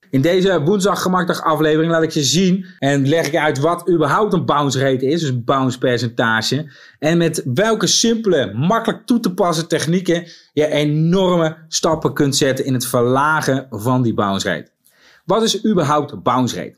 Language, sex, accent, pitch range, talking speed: Dutch, male, Dutch, 130-170 Hz, 170 wpm